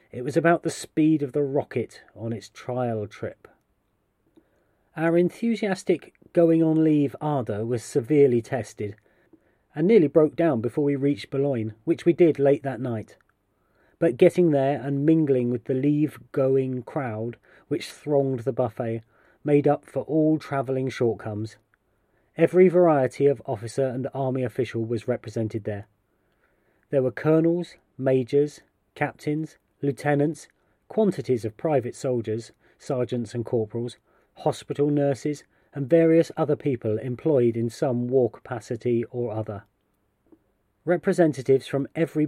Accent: British